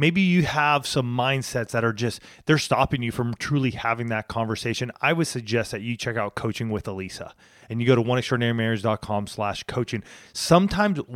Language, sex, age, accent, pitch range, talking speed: English, male, 30-49, American, 120-165 Hz, 195 wpm